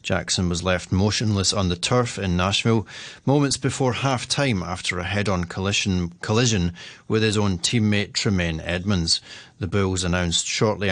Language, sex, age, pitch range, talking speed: English, male, 30-49, 90-110 Hz, 155 wpm